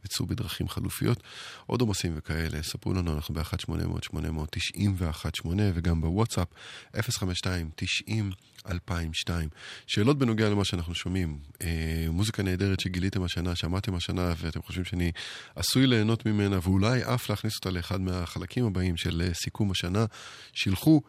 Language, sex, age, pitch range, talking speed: Hebrew, male, 20-39, 90-110 Hz, 120 wpm